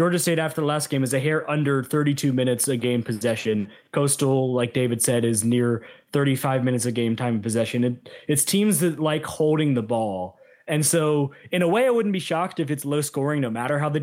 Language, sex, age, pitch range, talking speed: English, male, 20-39, 125-165 Hz, 225 wpm